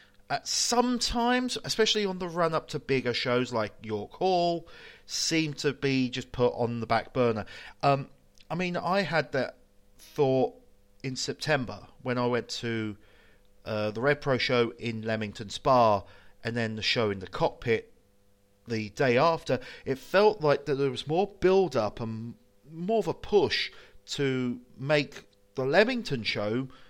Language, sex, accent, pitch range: English, male, British, 110-155 Hz